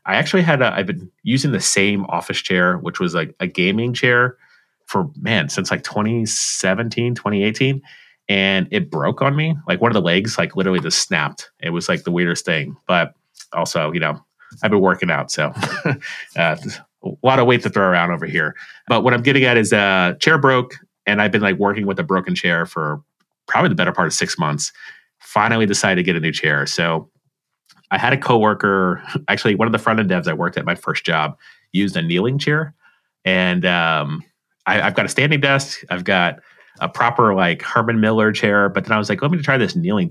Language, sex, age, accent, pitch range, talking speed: English, male, 30-49, American, 95-130 Hz, 215 wpm